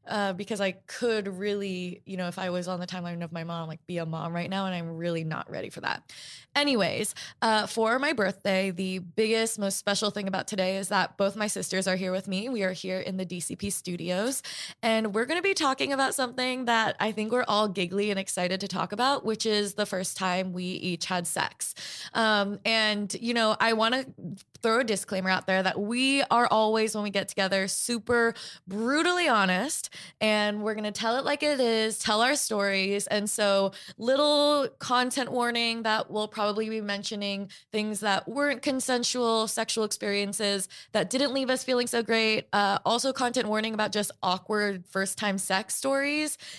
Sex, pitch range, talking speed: female, 195-235 Hz, 195 wpm